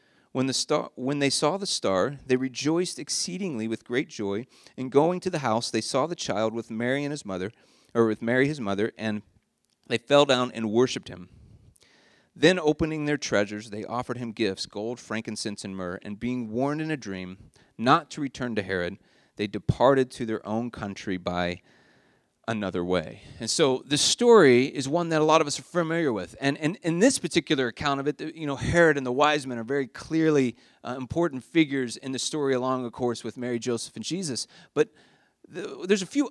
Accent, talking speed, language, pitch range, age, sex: American, 200 wpm, English, 110-150 Hz, 40-59, male